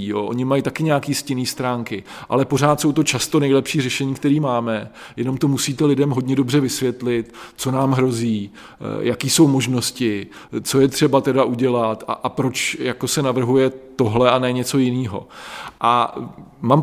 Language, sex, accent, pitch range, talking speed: Czech, male, native, 115-140 Hz, 170 wpm